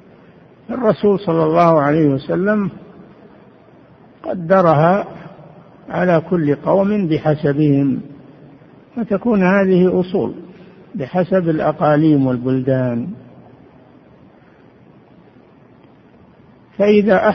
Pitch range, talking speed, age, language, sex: 140-185 Hz, 60 wpm, 60-79, Arabic, male